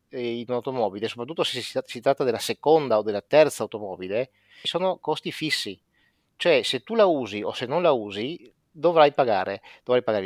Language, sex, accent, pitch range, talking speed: Italian, male, native, 115-165 Hz, 175 wpm